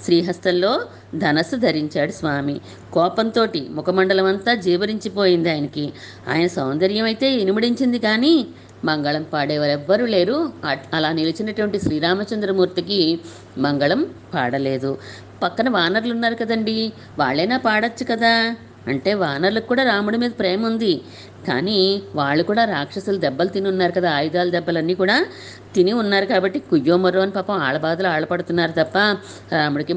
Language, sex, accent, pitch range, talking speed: Telugu, female, native, 155-210 Hz, 115 wpm